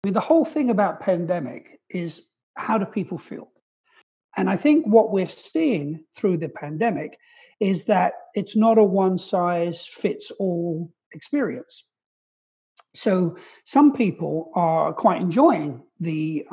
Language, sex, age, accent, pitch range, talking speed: English, male, 50-69, British, 165-220 Hz, 120 wpm